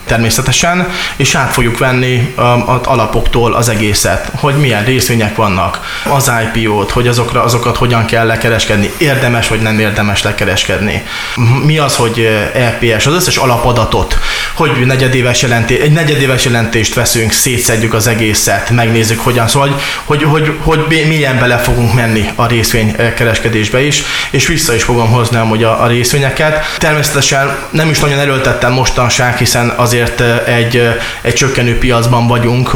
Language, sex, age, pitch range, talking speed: Hungarian, male, 20-39, 115-135 Hz, 145 wpm